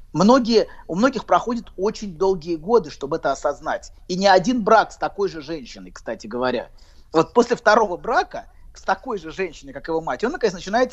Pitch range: 155-225 Hz